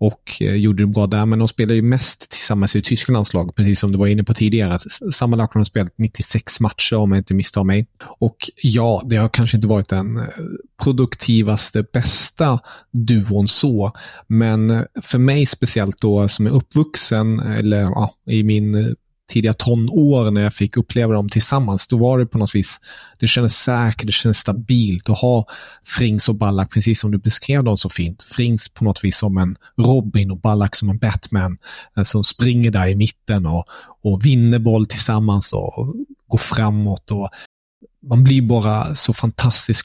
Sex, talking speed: male, 180 wpm